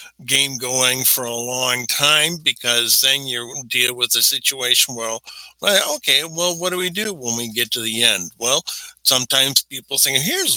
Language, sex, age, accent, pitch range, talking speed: English, male, 50-69, American, 120-155 Hz, 180 wpm